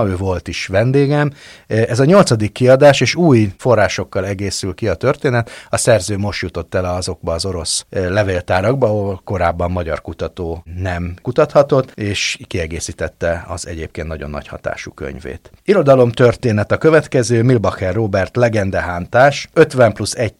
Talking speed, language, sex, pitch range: 140 wpm, Hungarian, male, 90-115 Hz